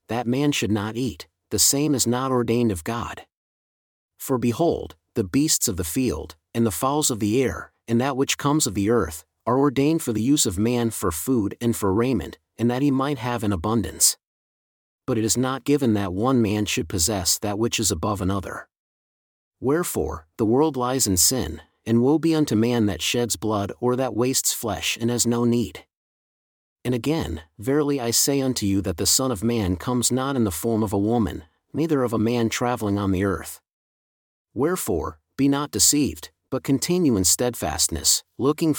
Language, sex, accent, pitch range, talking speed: English, male, American, 100-130 Hz, 195 wpm